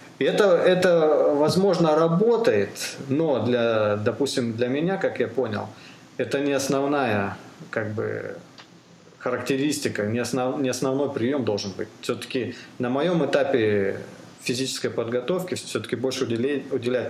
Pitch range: 105-135 Hz